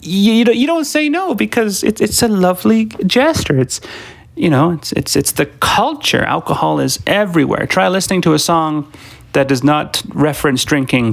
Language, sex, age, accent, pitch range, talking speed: English, male, 30-49, American, 120-170 Hz, 160 wpm